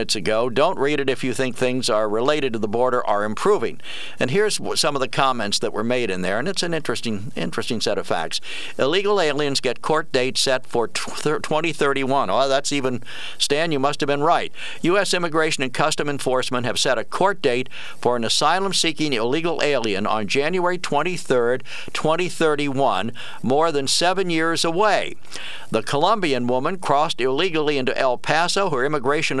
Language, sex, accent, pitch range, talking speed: English, male, American, 130-160 Hz, 175 wpm